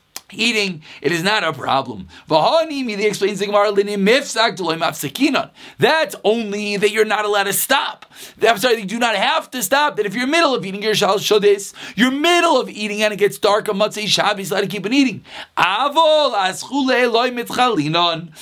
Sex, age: male, 30-49